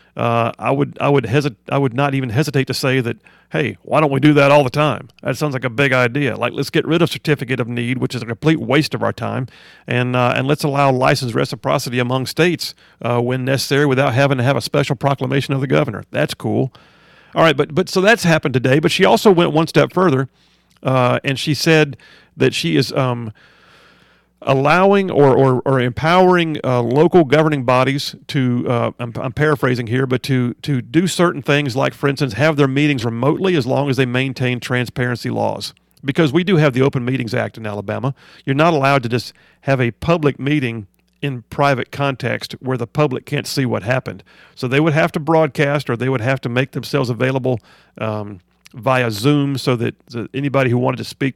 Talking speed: 210 wpm